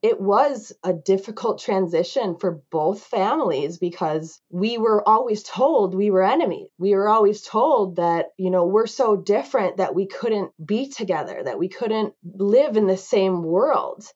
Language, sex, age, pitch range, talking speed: English, female, 20-39, 170-210 Hz, 165 wpm